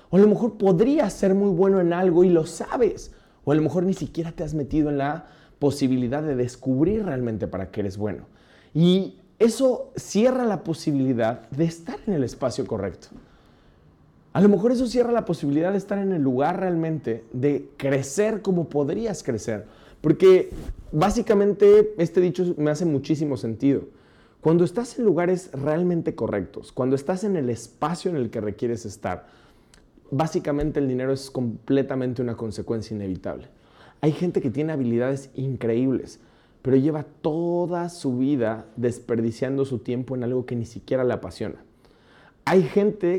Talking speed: 160 wpm